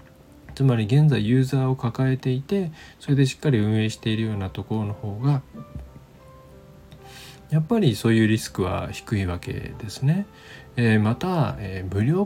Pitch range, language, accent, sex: 95-135 Hz, Japanese, native, male